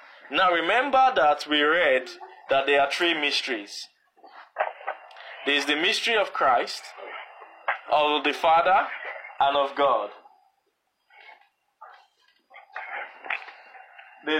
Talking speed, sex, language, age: 95 wpm, male, English, 20-39